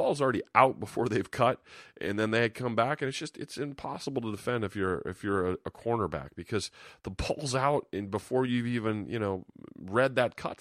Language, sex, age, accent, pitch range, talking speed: English, male, 30-49, American, 95-130 Hz, 215 wpm